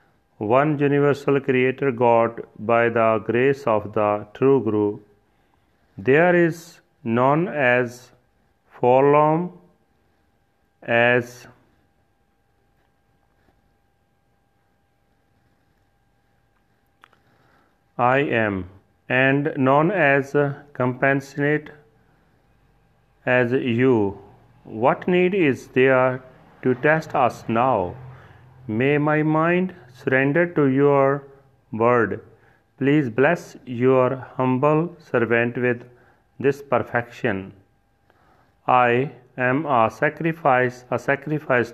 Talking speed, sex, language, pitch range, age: 80 wpm, male, Punjabi, 120-140 Hz, 40-59